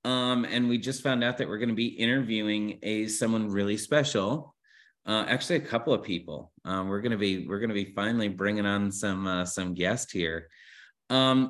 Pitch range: 110-145 Hz